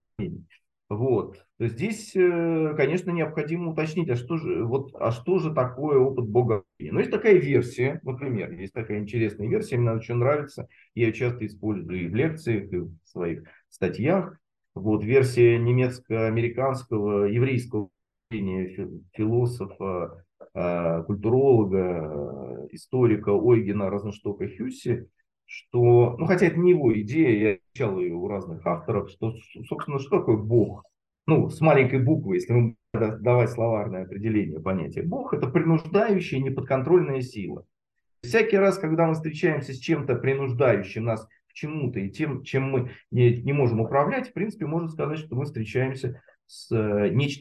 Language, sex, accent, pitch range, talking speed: Russian, male, native, 110-160 Hz, 140 wpm